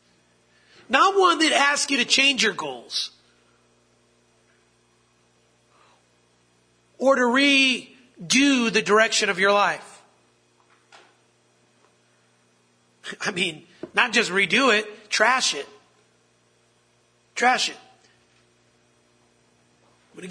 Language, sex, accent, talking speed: English, male, American, 85 wpm